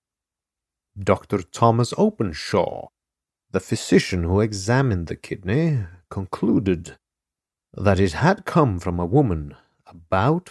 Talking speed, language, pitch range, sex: 105 wpm, English, 85-125 Hz, male